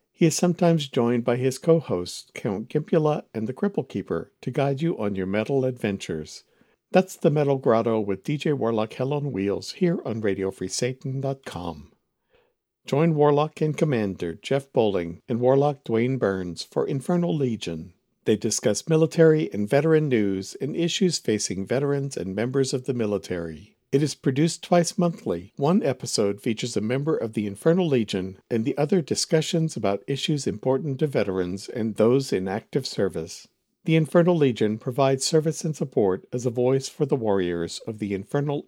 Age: 60-79